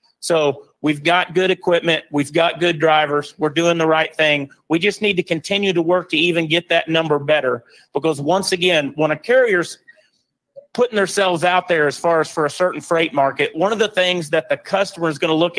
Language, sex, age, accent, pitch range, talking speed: English, male, 40-59, American, 155-185 Hz, 215 wpm